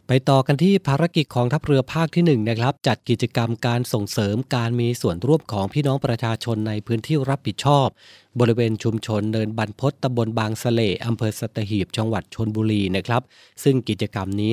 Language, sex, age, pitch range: Thai, male, 20-39, 110-130 Hz